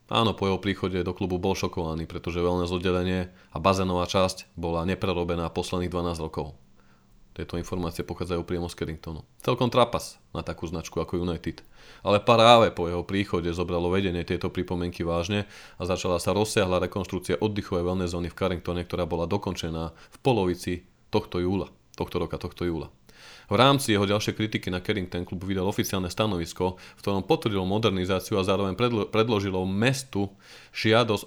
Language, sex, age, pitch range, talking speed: Slovak, male, 30-49, 90-110 Hz, 165 wpm